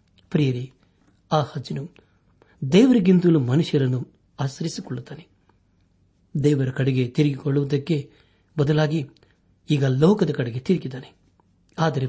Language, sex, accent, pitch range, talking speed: Kannada, male, native, 100-155 Hz, 75 wpm